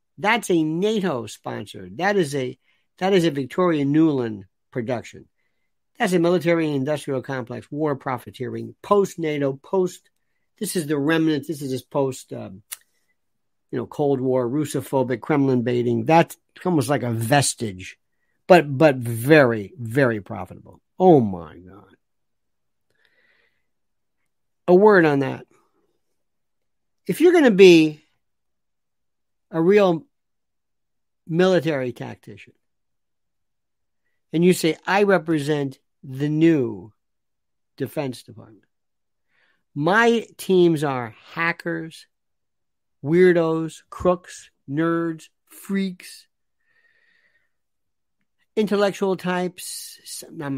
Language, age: English, 50-69